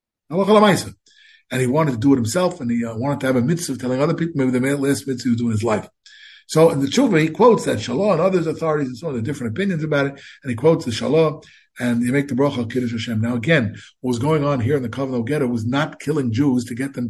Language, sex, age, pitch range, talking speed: English, male, 50-69, 125-160 Hz, 275 wpm